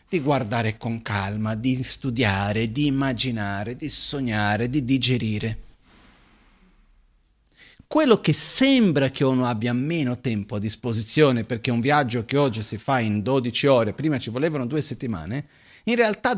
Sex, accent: male, native